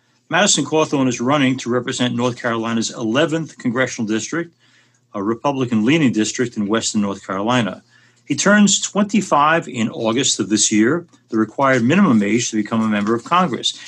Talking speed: 155 wpm